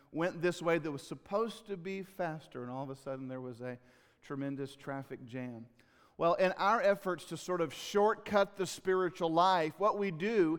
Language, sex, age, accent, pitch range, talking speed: English, male, 50-69, American, 160-195 Hz, 195 wpm